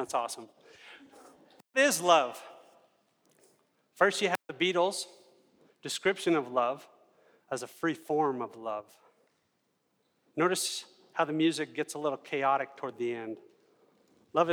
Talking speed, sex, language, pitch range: 130 wpm, male, English, 150-190 Hz